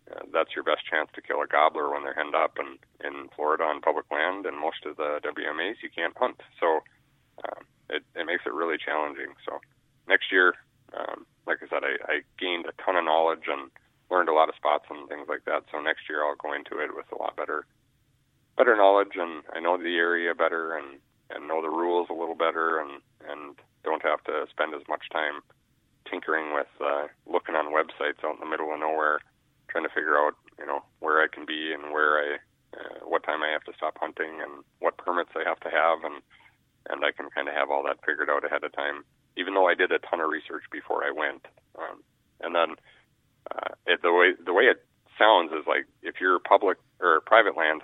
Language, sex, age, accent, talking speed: English, male, 30-49, American, 225 wpm